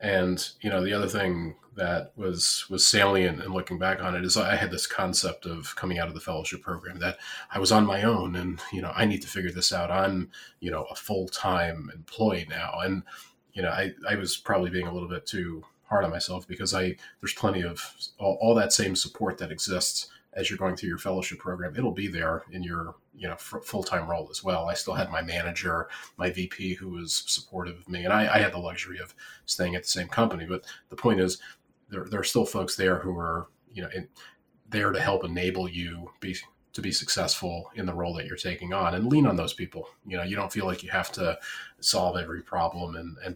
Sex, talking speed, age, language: male, 240 wpm, 30-49, English